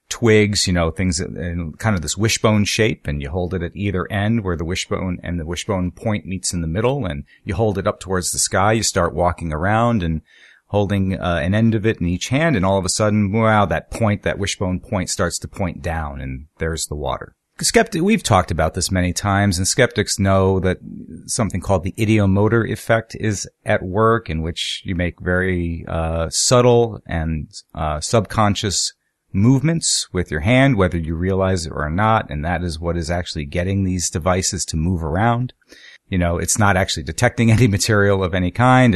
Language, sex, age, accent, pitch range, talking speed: English, male, 40-59, American, 85-110 Hz, 200 wpm